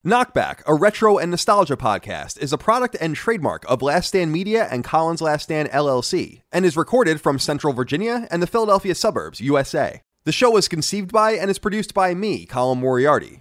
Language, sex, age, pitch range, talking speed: English, male, 30-49, 110-170 Hz, 190 wpm